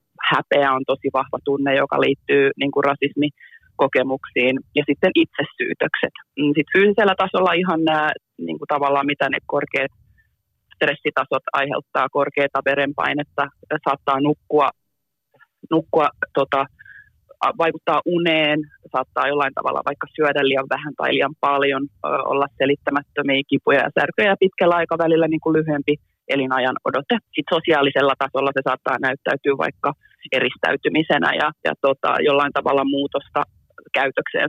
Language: Finnish